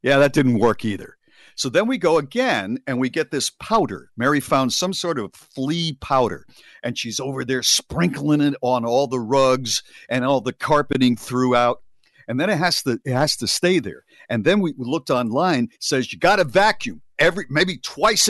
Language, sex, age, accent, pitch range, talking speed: English, male, 50-69, American, 110-155 Hz, 200 wpm